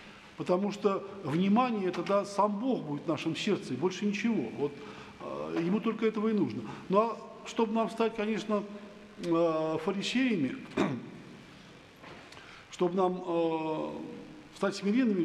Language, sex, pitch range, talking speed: Russian, male, 155-200 Hz, 120 wpm